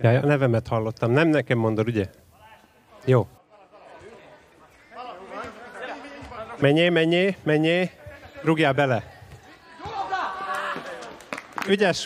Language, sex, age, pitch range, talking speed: Hungarian, male, 30-49, 120-175 Hz, 75 wpm